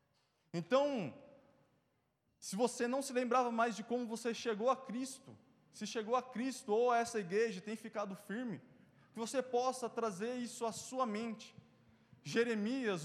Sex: male